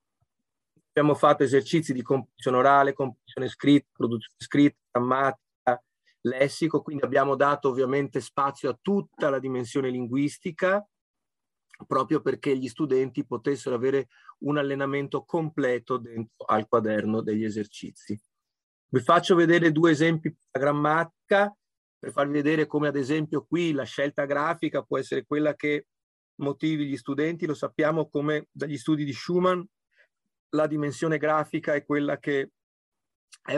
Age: 30-49